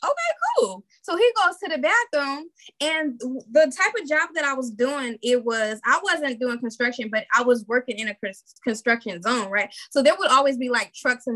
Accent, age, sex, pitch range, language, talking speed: American, 10-29, female, 240-330 Hz, English, 210 wpm